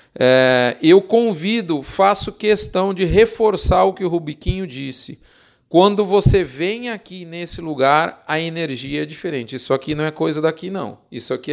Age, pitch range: 40-59, 155-200 Hz